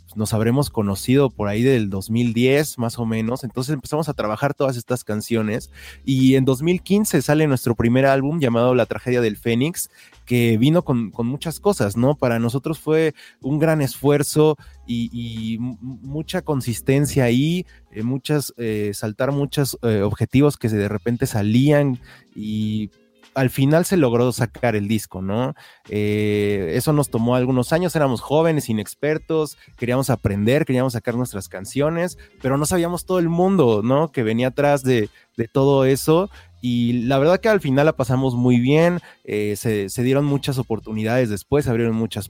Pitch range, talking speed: 110-140 Hz, 165 wpm